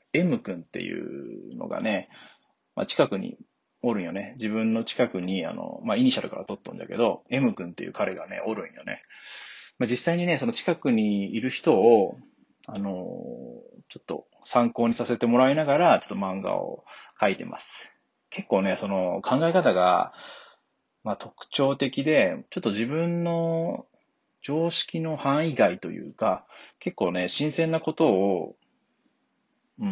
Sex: male